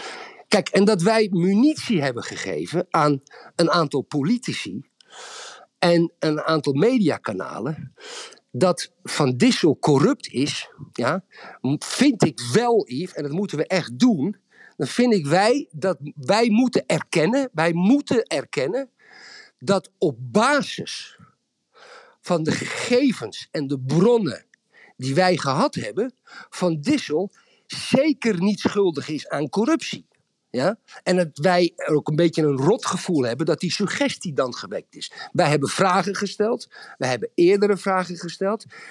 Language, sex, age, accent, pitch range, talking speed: Dutch, male, 50-69, Dutch, 155-235 Hz, 135 wpm